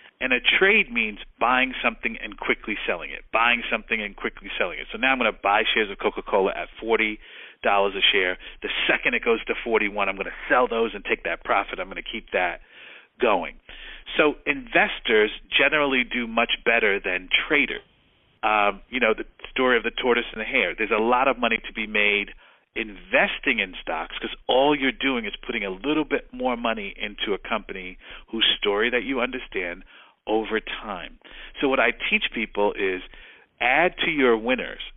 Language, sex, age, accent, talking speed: English, male, 40-59, American, 190 wpm